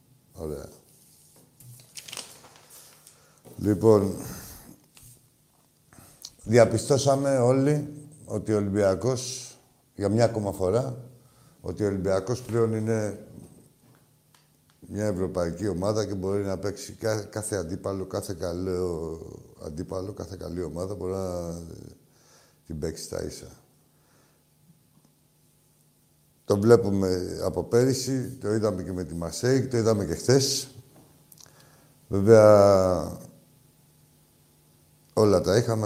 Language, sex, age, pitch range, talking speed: Greek, male, 60-79, 90-125 Hz, 90 wpm